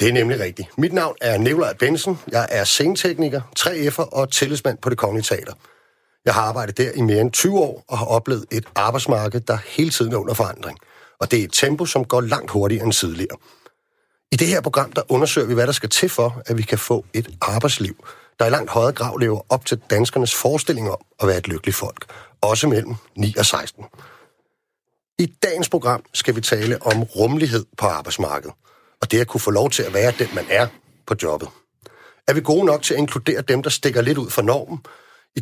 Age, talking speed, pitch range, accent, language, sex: 40-59, 215 wpm, 110-145 Hz, native, Danish, male